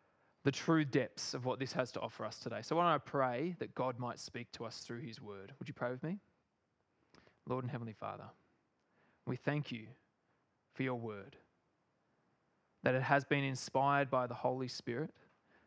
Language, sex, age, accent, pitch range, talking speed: English, male, 20-39, Australian, 120-140 Hz, 190 wpm